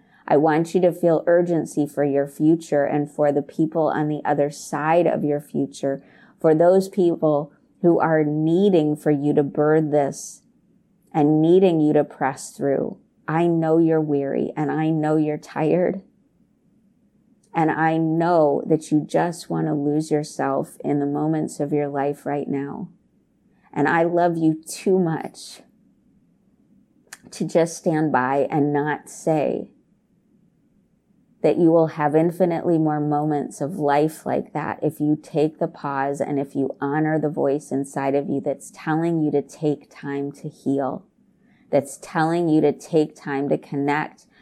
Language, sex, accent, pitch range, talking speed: English, female, American, 145-165 Hz, 160 wpm